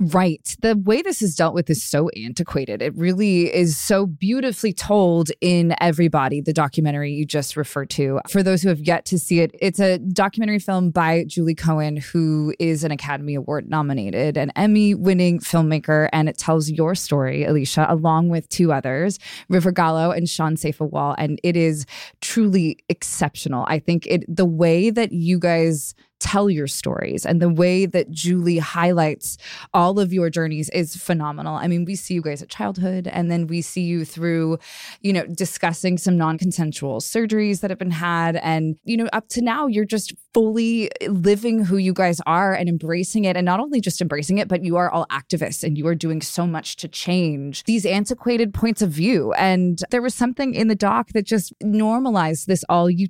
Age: 20-39